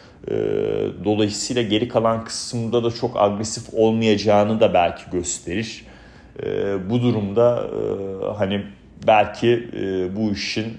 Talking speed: 95 wpm